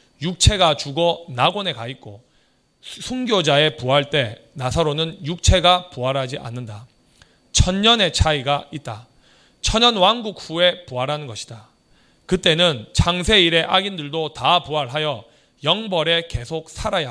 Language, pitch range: Korean, 140-190 Hz